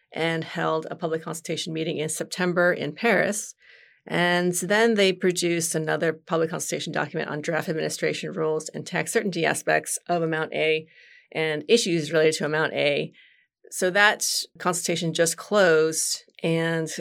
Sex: female